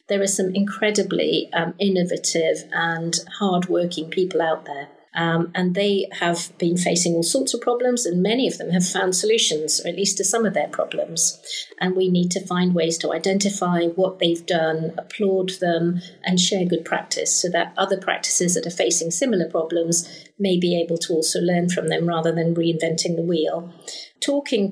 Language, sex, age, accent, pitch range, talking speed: English, female, 40-59, British, 170-200 Hz, 185 wpm